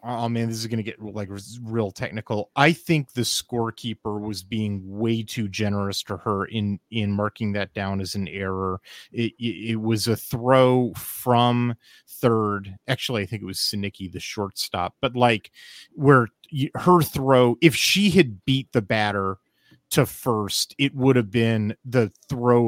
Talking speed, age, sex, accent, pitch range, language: 165 wpm, 30-49, male, American, 105-125 Hz, English